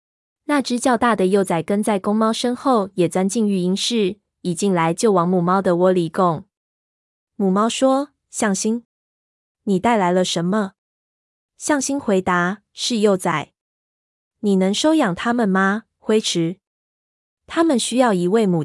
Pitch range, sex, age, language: 175-230 Hz, female, 20-39, Chinese